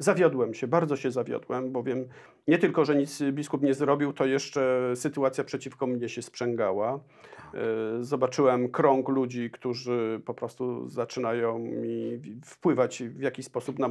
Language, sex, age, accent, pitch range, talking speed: Polish, male, 40-59, native, 125-145 Hz, 140 wpm